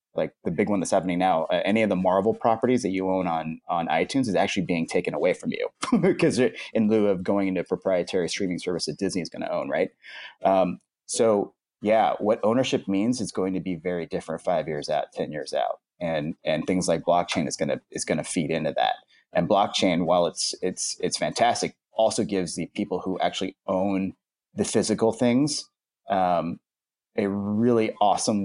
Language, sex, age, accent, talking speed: English, male, 30-49, American, 200 wpm